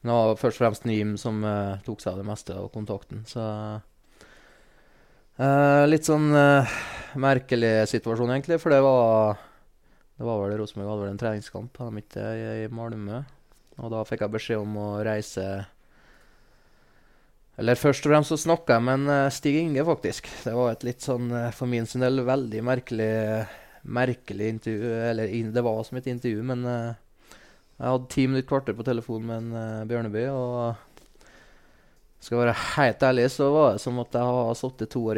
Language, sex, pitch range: English, male, 110-125 Hz